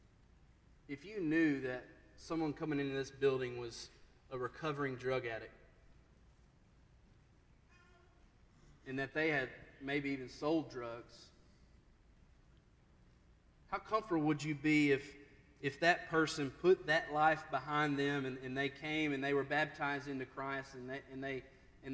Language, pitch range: English, 130-155 Hz